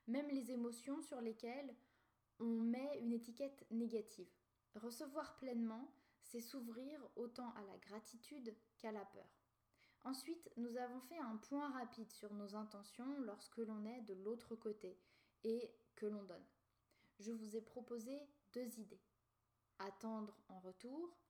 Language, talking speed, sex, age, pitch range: French, 140 wpm, female, 10-29, 210-255 Hz